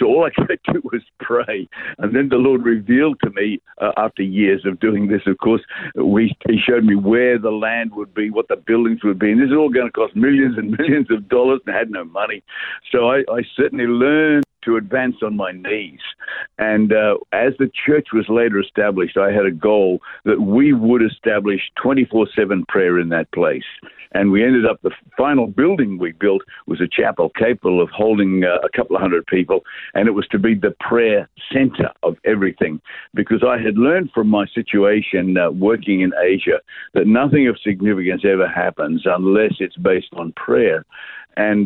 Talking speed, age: 195 wpm, 60-79